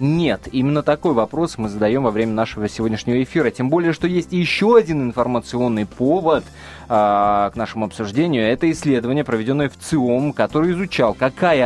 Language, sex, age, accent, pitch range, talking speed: Russian, male, 20-39, native, 110-160 Hz, 165 wpm